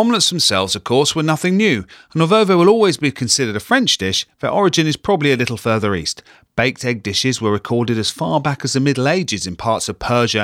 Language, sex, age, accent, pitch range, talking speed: English, male, 40-59, British, 105-150 Hz, 235 wpm